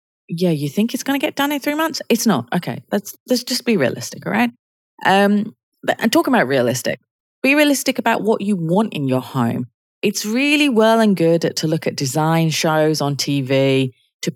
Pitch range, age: 130-200 Hz, 30-49